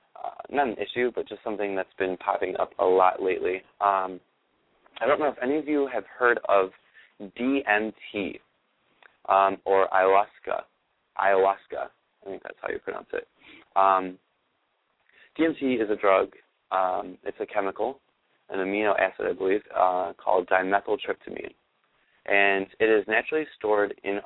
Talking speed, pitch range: 150 wpm, 95-120 Hz